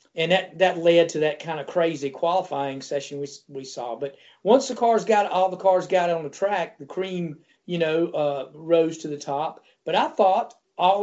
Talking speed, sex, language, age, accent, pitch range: 210 wpm, male, English, 40-59, American, 150-185 Hz